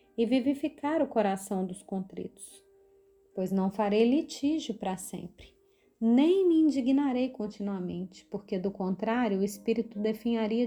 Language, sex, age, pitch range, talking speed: Portuguese, female, 30-49, 195-260 Hz, 125 wpm